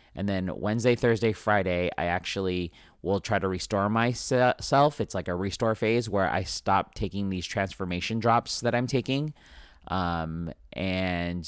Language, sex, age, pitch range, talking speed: English, male, 30-49, 90-110 Hz, 150 wpm